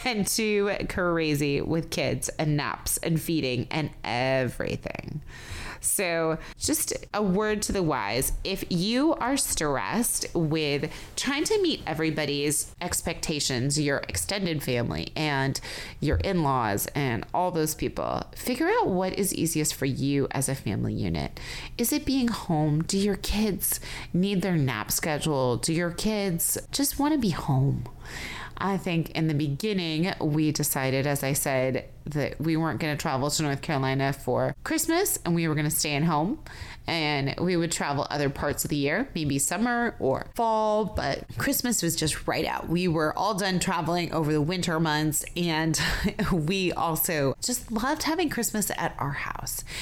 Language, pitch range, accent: English, 145-200 Hz, American